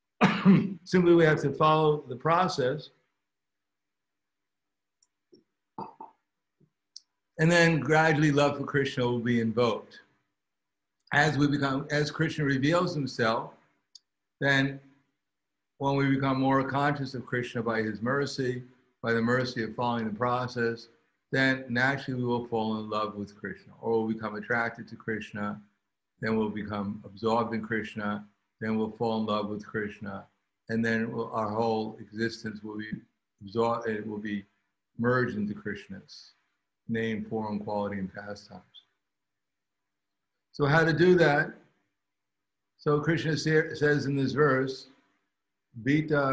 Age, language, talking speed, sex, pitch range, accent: 60-79, English, 130 wpm, male, 105-135 Hz, American